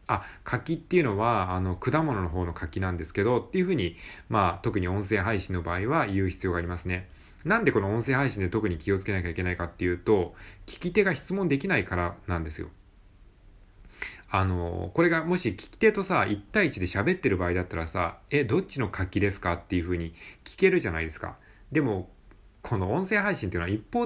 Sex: male